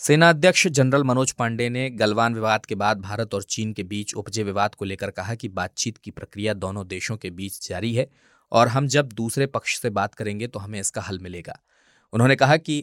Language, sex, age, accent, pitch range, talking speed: Hindi, male, 20-39, native, 100-125 Hz, 215 wpm